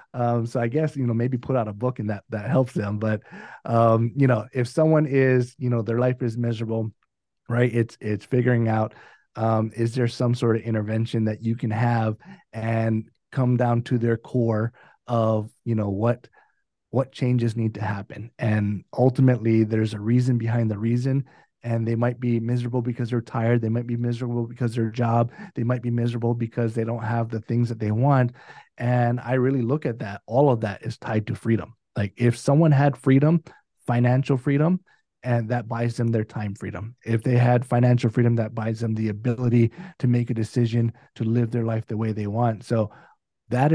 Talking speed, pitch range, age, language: 200 wpm, 115-125 Hz, 30-49, English